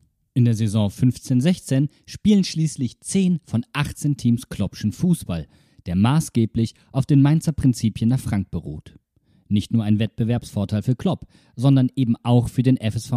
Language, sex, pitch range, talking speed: German, male, 100-135 Hz, 150 wpm